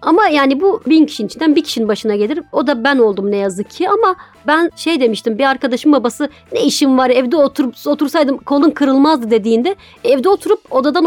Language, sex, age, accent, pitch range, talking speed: Turkish, female, 40-59, native, 230-320 Hz, 195 wpm